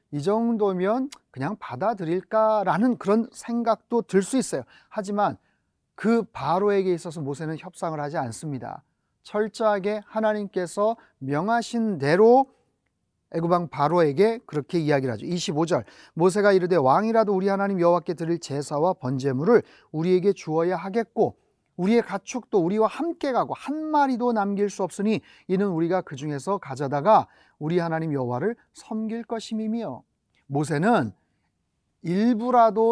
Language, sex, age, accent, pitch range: Korean, male, 40-59, native, 165-225 Hz